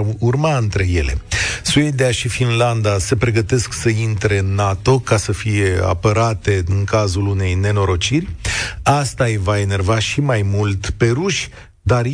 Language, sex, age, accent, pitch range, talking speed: Romanian, male, 40-59, native, 100-135 Hz, 150 wpm